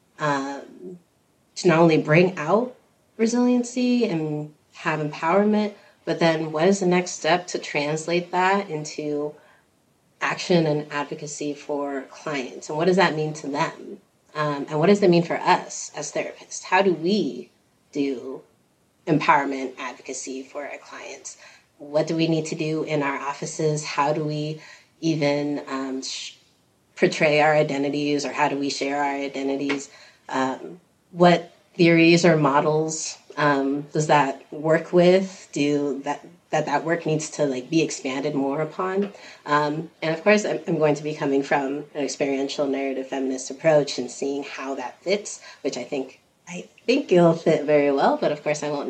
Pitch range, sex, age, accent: 140-170 Hz, female, 30-49, American